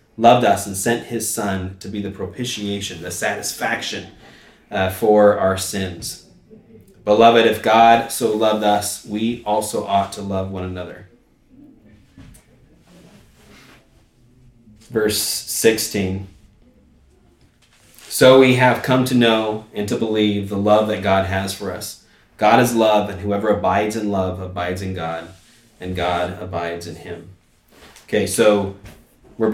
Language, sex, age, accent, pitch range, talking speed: English, male, 30-49, American, 100-115 Hz, 135 wpm